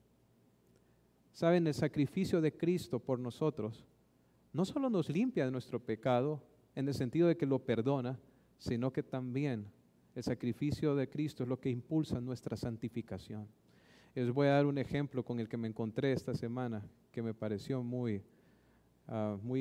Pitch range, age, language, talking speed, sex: 120-150 Hz, 40-59, English, 160 wpm, male